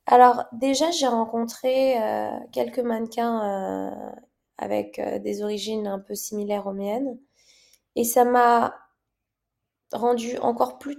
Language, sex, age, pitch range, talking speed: French, female, 20-39, 220-260 Hz, 125 wpm